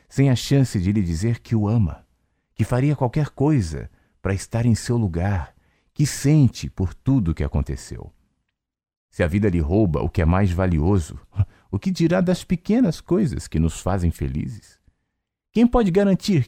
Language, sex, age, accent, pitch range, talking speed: Portuguese, male, 40-59, Brazilian, 80-115 Hz, 175 wpm